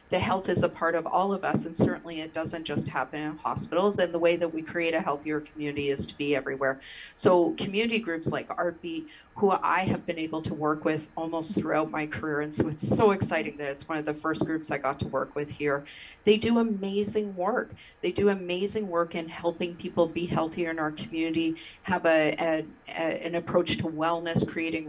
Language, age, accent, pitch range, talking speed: English, 40-59, American, 155-175 Hz, 215 wpm